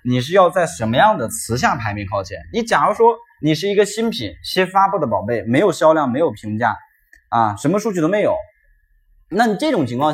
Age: 20-39